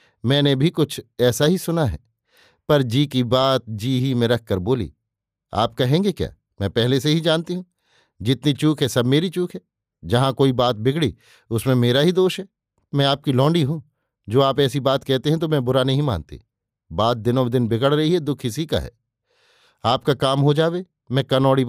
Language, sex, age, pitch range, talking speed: Hindi, male, 50-69, 115-140 Hz, 200 wpm